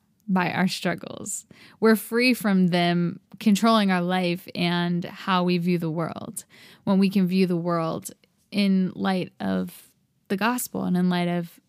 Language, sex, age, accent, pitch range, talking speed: English, female, 10-29, American, 185-220 Hz, 160 wpm